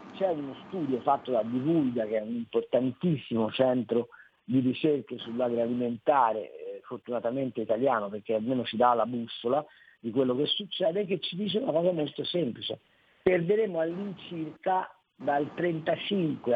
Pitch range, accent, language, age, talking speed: 130-210 Hz, native, Italian, 50-69, 135 wpm